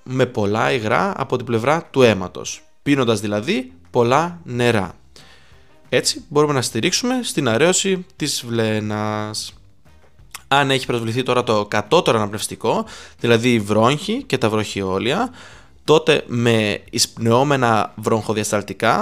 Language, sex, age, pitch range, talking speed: Greek, male, 20-39, 105-130 Hz, 115 wpm